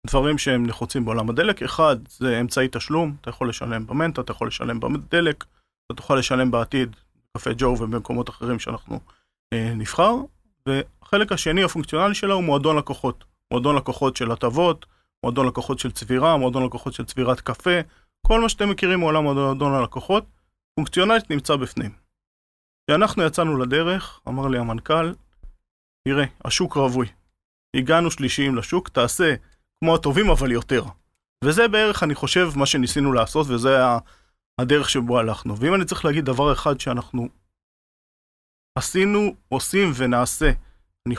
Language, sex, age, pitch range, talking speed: Hebrew, male, 30-49, 120-155 Hz, 140 wpm